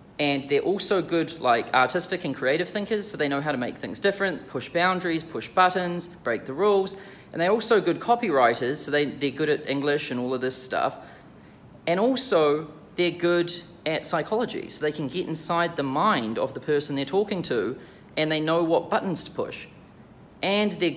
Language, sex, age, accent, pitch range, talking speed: English, male, 30-49, Australian, 140-180 Hz, 195 wpm